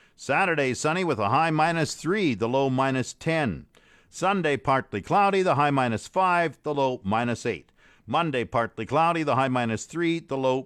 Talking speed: 175 wpm